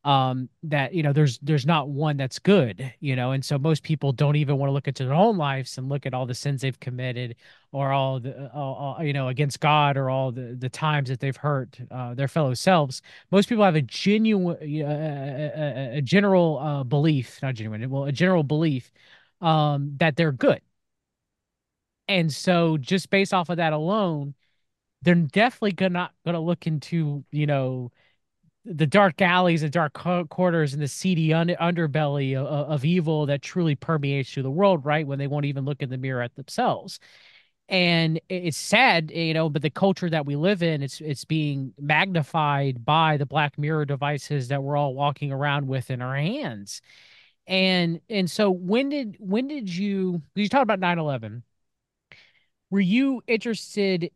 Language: English